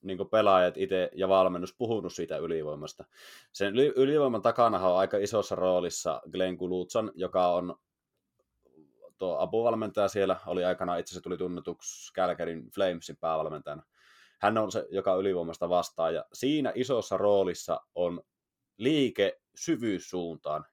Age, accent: 20-39, native